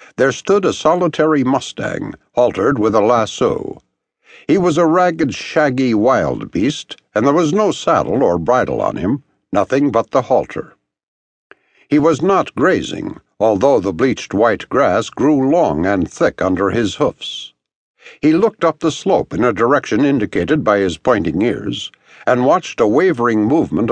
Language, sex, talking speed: English, male, 160 wpm